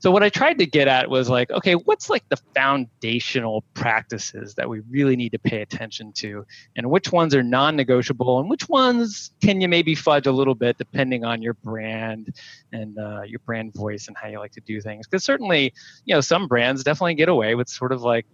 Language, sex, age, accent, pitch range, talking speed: English, male, 20-39, American, 120-140 Hz, 220 wpm